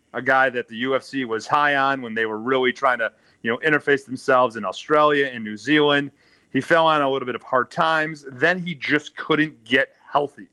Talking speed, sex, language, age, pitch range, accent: 215 wpm, male, English, 30-49, 125-150 Hz, American